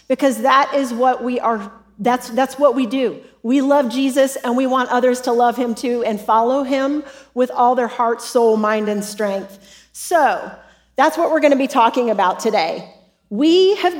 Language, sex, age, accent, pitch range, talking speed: English, female, 40-59, American, 225-280 Hz, 190 wpm